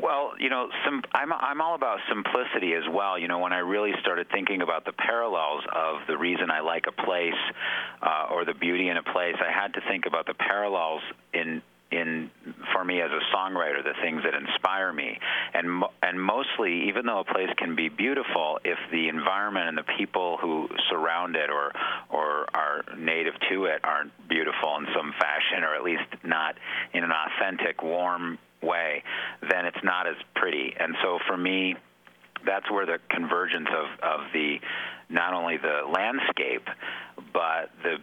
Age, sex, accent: 40-59, male, American